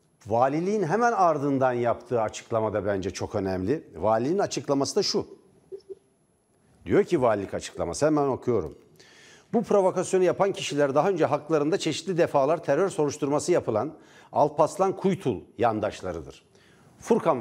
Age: 60-79